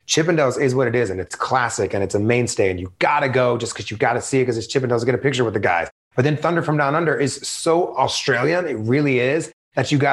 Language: English